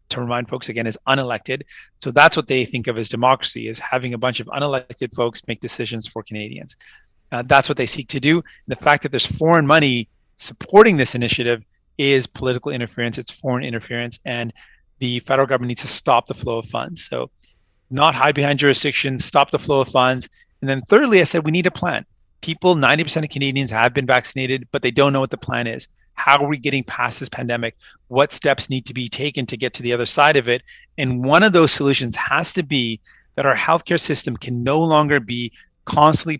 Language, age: English, 30-49